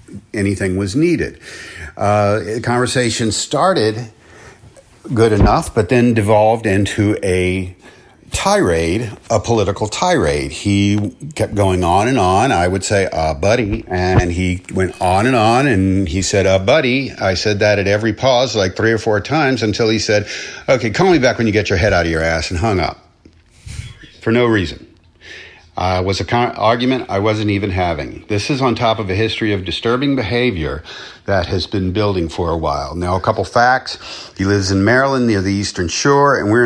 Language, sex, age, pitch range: English, male, 50-69, 95-115 Hz